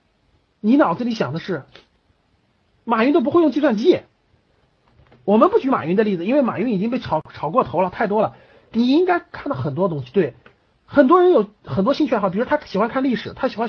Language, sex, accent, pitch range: Chinese, male, native, 180-265 Hz